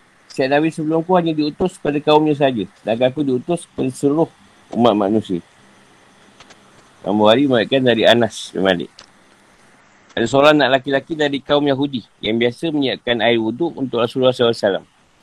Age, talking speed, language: 50-69, 140 wpm, Malay